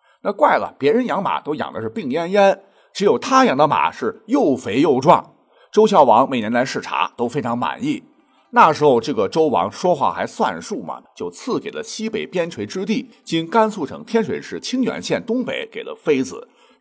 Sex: male